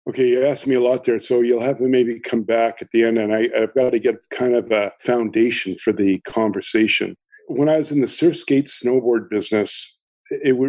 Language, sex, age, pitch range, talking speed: English, male, 50-69, 105-120 Hz, 225 wpm